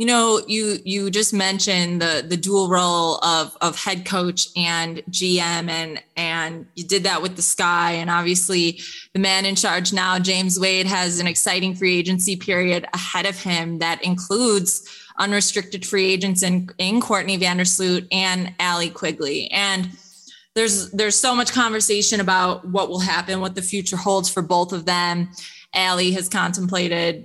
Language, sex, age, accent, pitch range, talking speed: English, female, 20-39, American, 180-200 Hz, 165 wpm